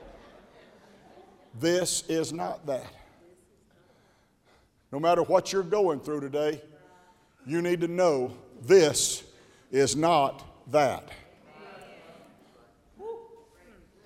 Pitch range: 155-200 Hz